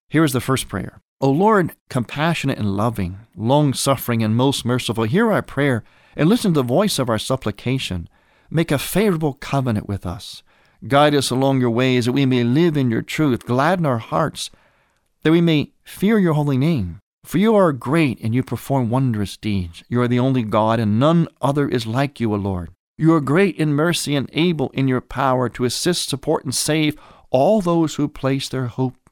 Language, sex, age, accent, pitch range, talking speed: English, male, 50-69, American, 110-145 Hz, 200 wpm